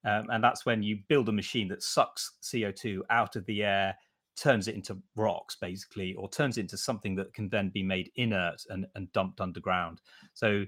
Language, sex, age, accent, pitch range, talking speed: English, male, 30-49, British, 95-115 Hz, 195 wpm